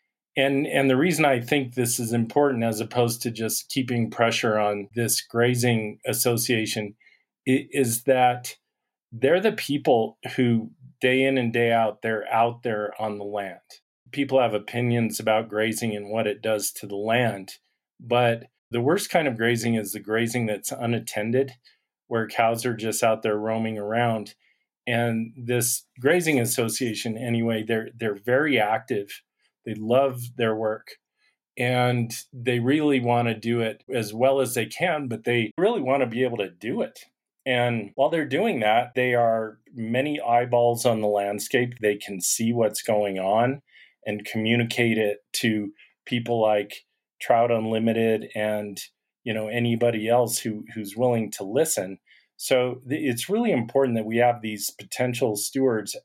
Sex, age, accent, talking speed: male, 40-59, American, 160 wpm